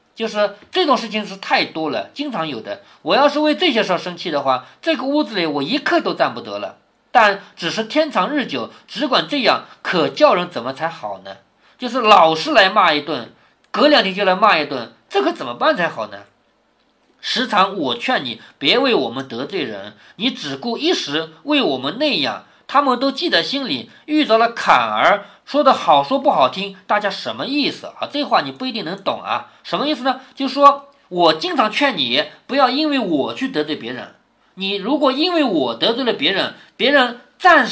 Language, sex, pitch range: Chinese, male, 200-295 Hz